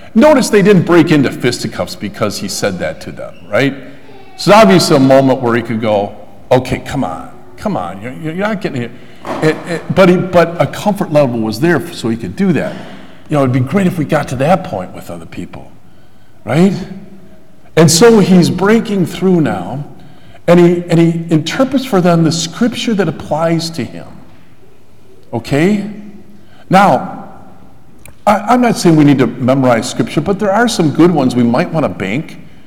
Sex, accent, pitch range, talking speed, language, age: male, American, 130-190 Hz, 180 wpm, English, 50-69